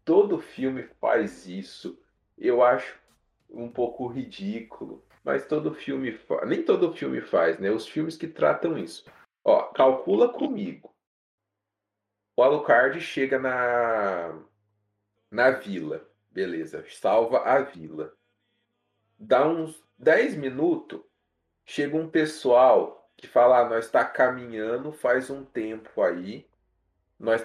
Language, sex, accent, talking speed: Portuguese, male, Brazilian, 120 wpm